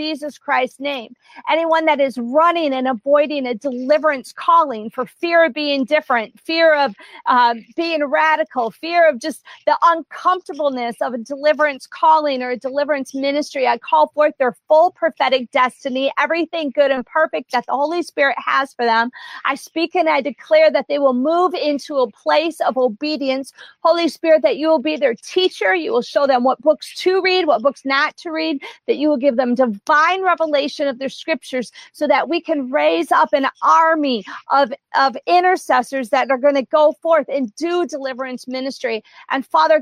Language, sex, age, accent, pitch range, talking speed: English, female, 40-59, American, 270-315 Hz, 180 wpm